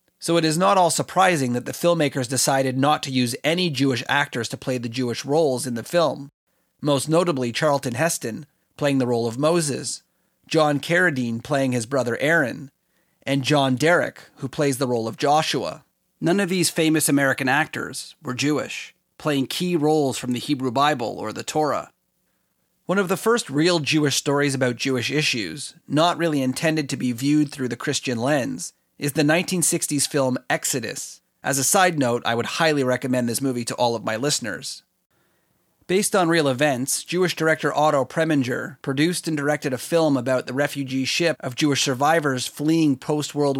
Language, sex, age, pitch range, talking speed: English, male, 30-49, 130-160 Hz, 175 wpm